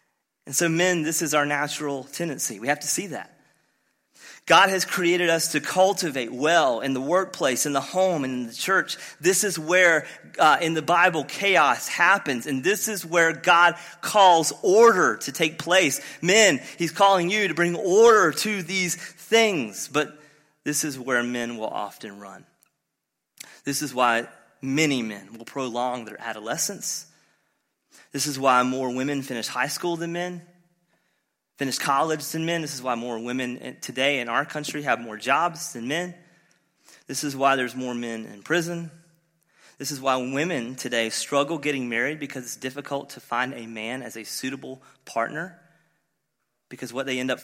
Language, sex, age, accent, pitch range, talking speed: English, male, 30-49, American, 130-170 Hz, 170 wpm